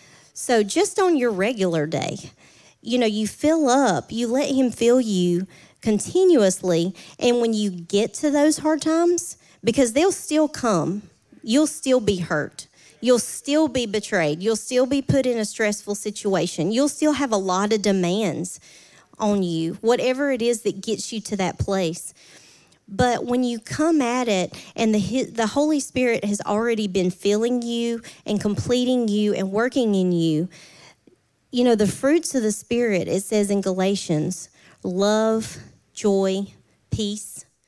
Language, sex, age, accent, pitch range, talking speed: English, female, 40-59, American, 195-250 Hz, 160 wpm